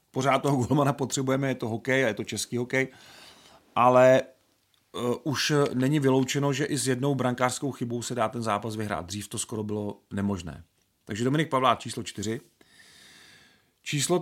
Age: 40-59